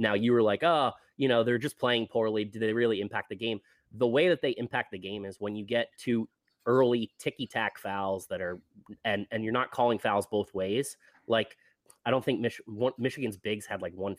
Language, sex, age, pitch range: English, male, 30-49, 105-130 Hz